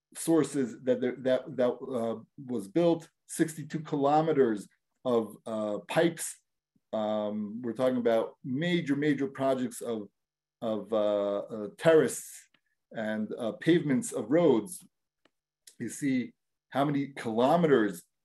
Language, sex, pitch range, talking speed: English, male, 115-150 Hz, 115 wpm